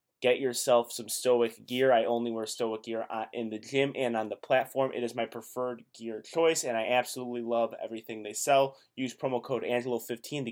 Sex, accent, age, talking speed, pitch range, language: male, American, 20-39, 200 wpm, 120-140 Hz, English